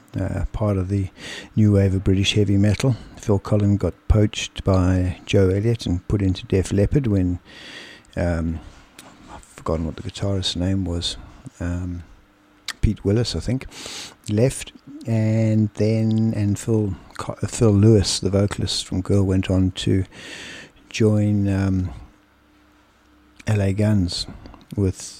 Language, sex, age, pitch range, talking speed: English, male, 60-79, 95-105 Hz, 135 wpm